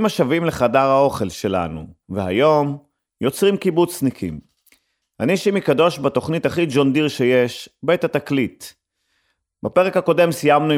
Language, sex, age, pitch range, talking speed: Hebrew, male, 30-49, 120-150 Hz, 110 wpm